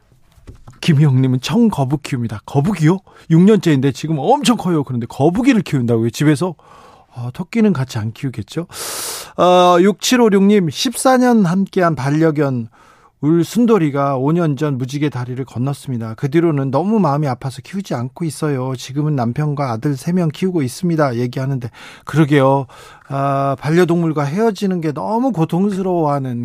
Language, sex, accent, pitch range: Korean, male, native, 135-180 Hz